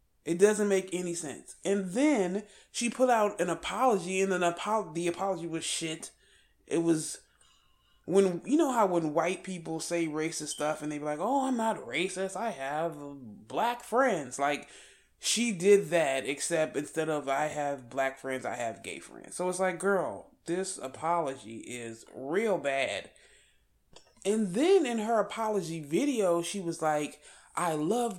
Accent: American